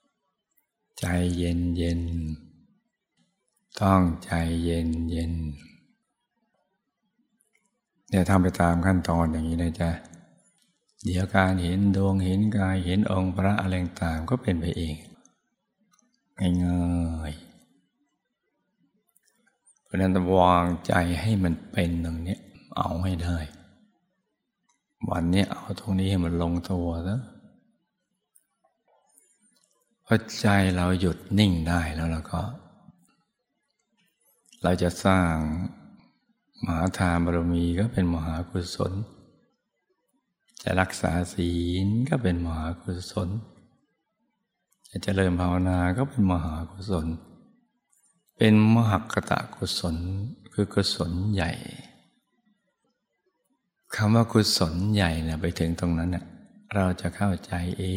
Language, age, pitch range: Thai, 60-79, 85-105 Hz